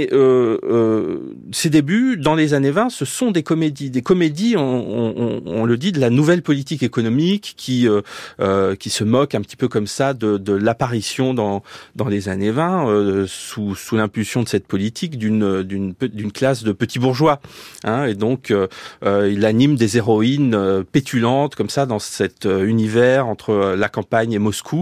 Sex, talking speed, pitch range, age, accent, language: male, 180 wpm, 105-140 Hz, 30-49, French, French